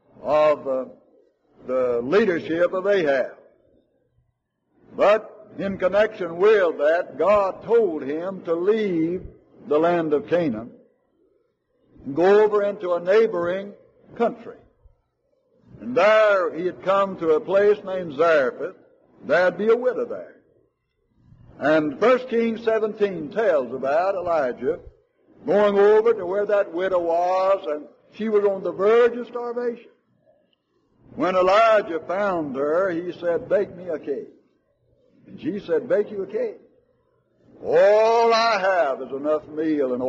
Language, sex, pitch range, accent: English, male, 175-250 Hz, American